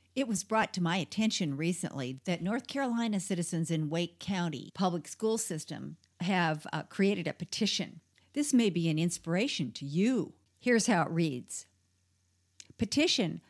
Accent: American